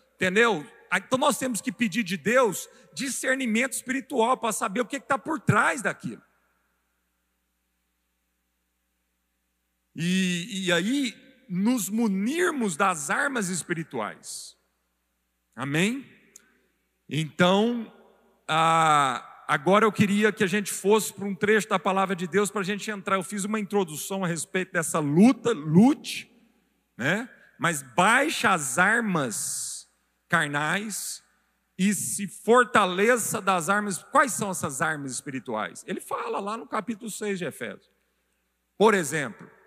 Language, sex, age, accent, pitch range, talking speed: Portuguese, male, 50-69, Brazilian, 160-230 Hz, 125 wpm